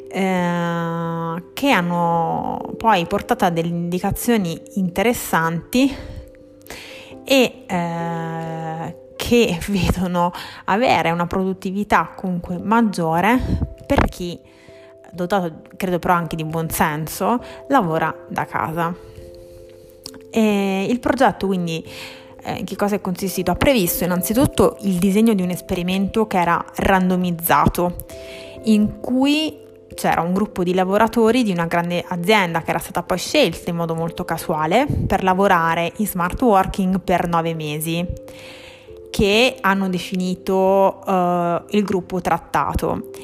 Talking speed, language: 120 wpm, Italian